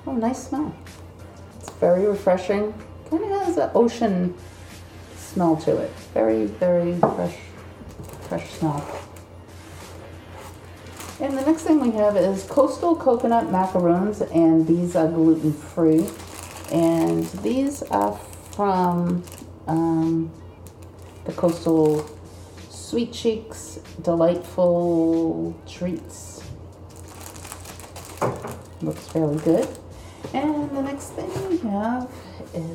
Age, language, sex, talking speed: 40-59, English, female, 100 wpm